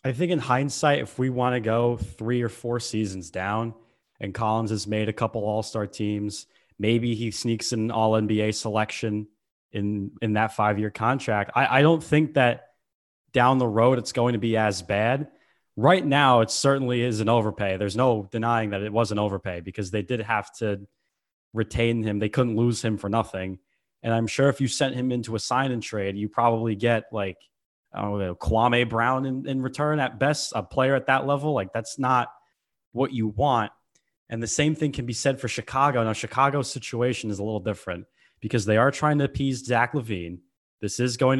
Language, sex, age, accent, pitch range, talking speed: English, male, 20-39, American, 105-135 Hz, 200 wpm